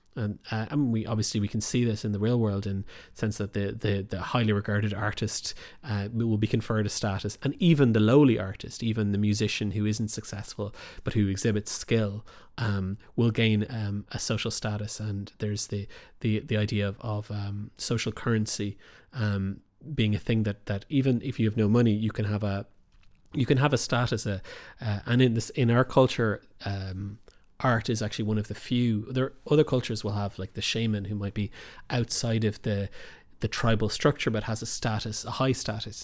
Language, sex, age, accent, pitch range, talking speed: English, male, 30-49, Irish, 105-115 Hz, 205 wpm